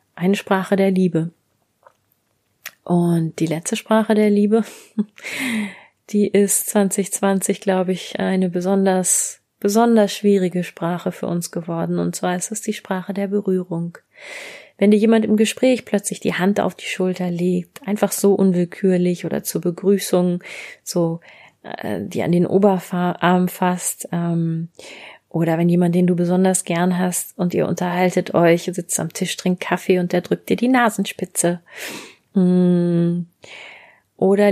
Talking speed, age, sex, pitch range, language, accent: 140 wpm, 30-49, female, 175-205 Hz, German, German